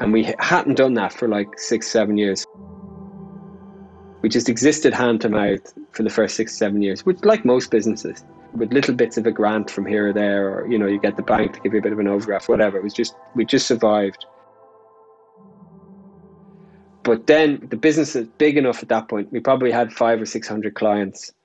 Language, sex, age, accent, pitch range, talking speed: English, male, 20-39, Irish, 105-120 Hz, 210 wpm